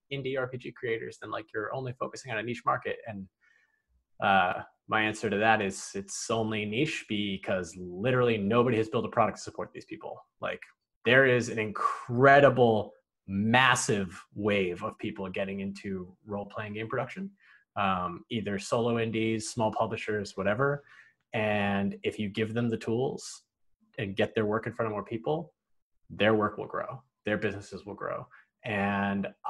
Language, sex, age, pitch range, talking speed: English, male, 20-39, 100-120 Hz, 160 wpm